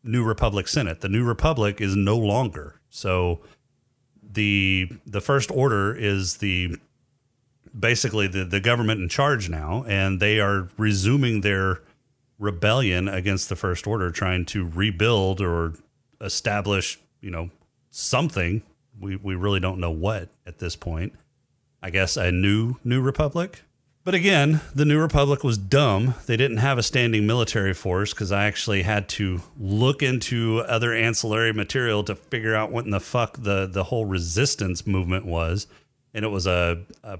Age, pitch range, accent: 30-49, 95-130 Hz, American